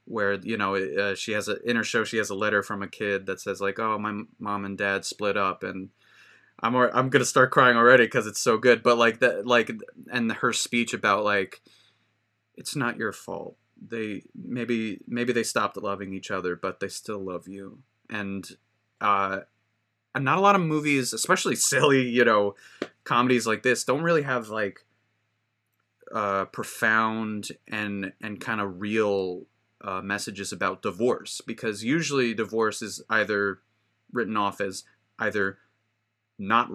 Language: English